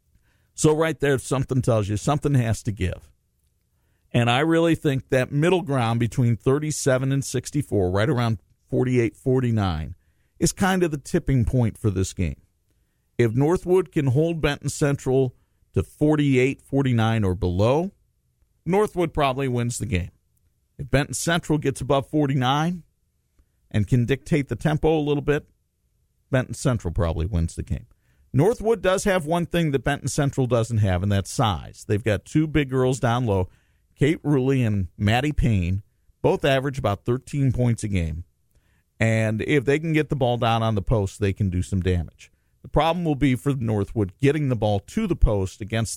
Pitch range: 100-145 Hz